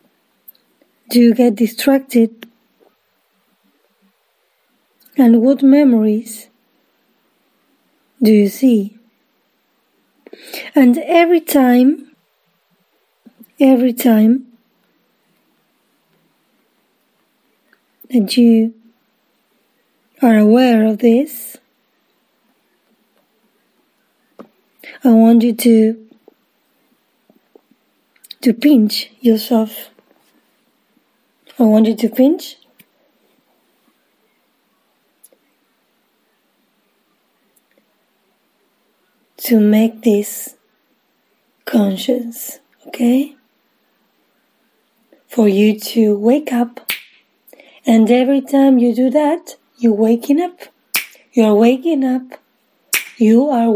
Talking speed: 65 wpm